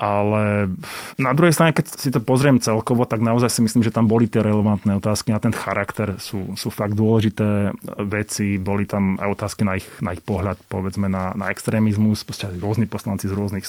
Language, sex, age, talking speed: Slovak, male, 30-49, 195 wpm